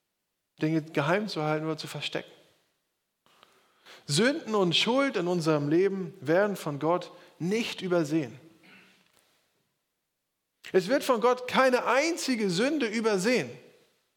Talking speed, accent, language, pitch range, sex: 110 wpm, German, German, 165-215 Hz, male